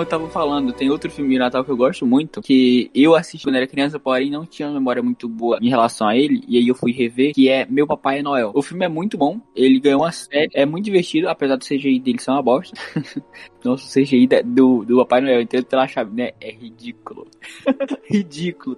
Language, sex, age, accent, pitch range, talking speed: Portuguese, male, 10-29, Brazilian, 125-160 Hz, 235 wpm